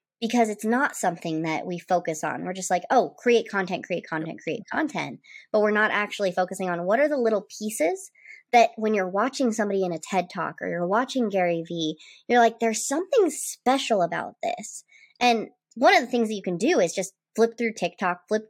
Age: 20-39